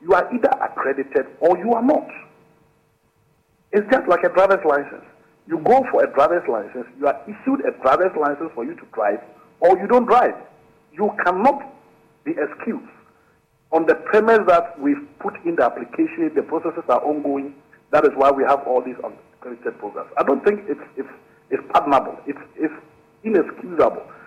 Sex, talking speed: male, 175 wpm